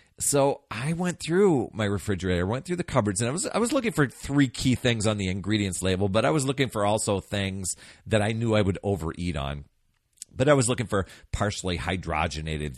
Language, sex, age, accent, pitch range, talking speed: English, male, 40-59, American, 85-120 Hz, 210 wpm